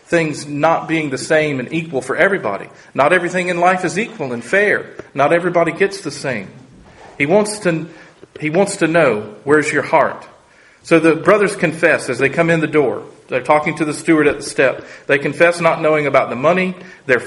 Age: 40-59